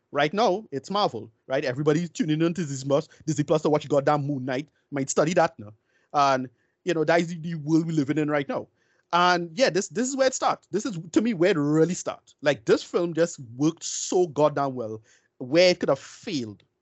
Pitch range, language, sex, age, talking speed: 145-175 Hz, English, male, 30-49, 230 wpm